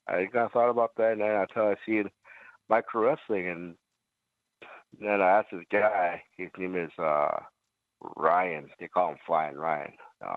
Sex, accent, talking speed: male, American, 170 wpm